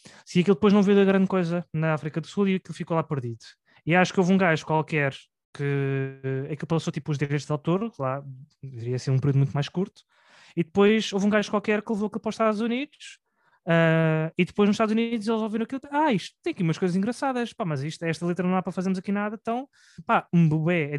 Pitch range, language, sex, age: 150-195 Hz, Portuguese, male, 20-39